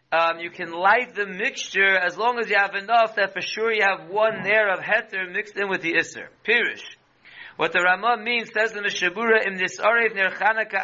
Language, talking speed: English, 215 wpm